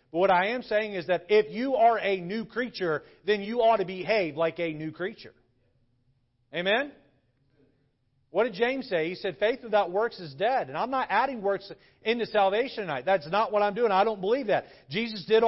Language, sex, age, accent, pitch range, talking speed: English, male, 40-59, American, 170-235 Hz, 205 wpm